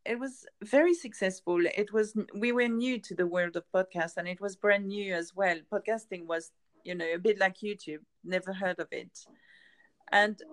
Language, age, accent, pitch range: English, 40-59, French, 190-240 Hz